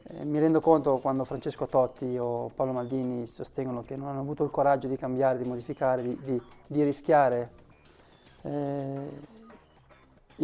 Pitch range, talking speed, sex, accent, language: 125-145 Hz, 145 wpm, male, native, Italian